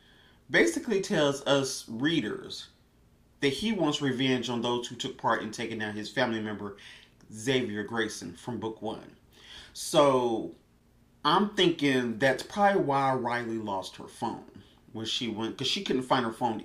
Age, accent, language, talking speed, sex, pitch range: 30-49, American, English, 155 wpm, male, 115-160 Hz